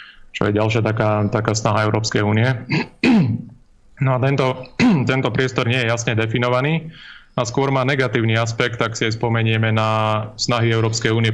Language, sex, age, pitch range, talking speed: Slovak, male, 20-39, 110-125 Hz, 160 wpm